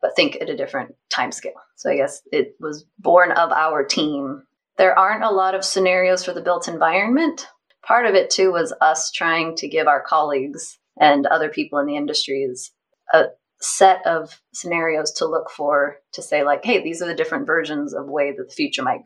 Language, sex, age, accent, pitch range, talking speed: English, female, 20-39, American, 145-195 Hz, 205 wpm